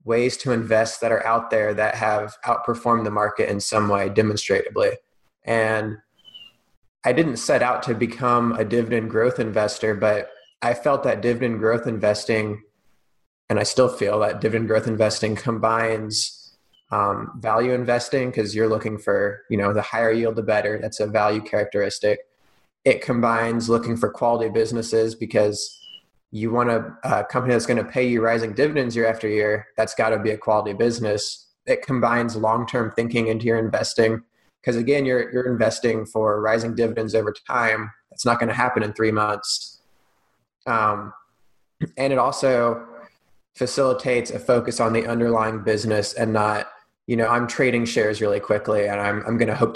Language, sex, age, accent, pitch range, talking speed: English, male, 20-39, American, 110-120 Hz, 170 wpm